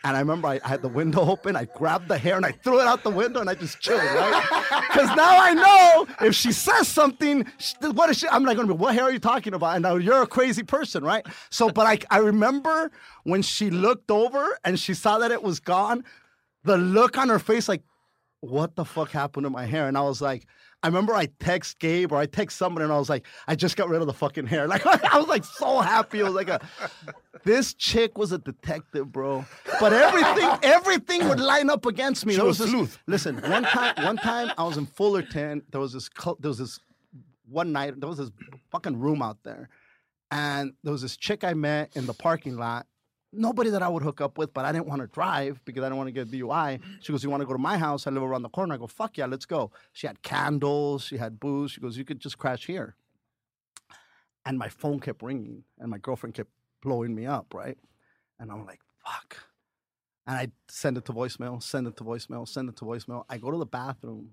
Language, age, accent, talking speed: English, 30-49, American, 245 wpm